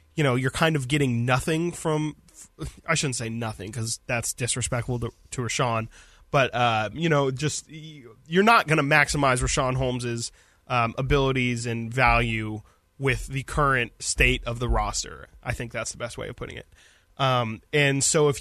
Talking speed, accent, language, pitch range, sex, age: 175 wpm, American, English, 120-140 Hz, male, 20-39